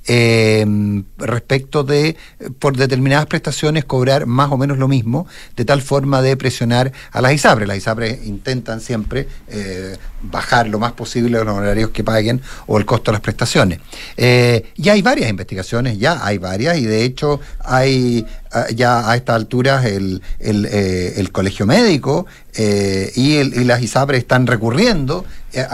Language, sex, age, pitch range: Spanish, male, 50-69, 110-150 Hz